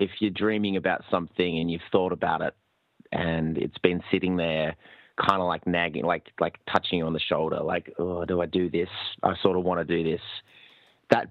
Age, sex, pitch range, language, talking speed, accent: 30-49, male, 85-105 Hz, English, 210 wpm, Australian